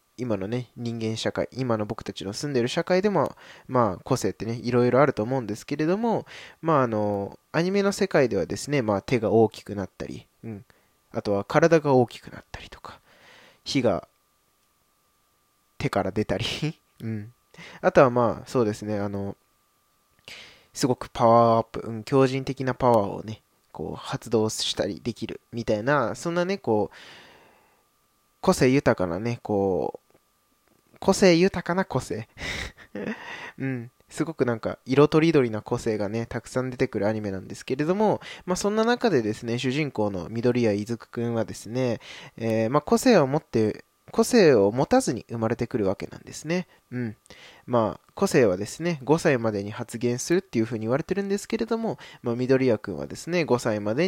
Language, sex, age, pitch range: Japanese, male, 20-39, 105-145 Hz